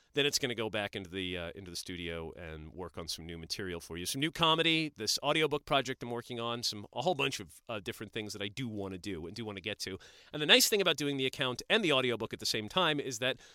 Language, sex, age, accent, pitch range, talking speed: English, male, 30-49, American, 105-160 Hz, 290 wpm